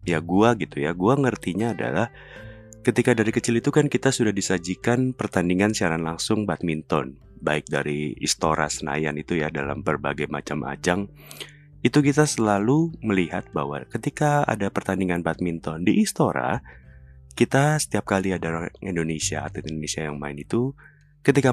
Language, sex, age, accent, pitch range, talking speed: Indonesian, male, 30-49, native, 80-115 Hz, 140 wpm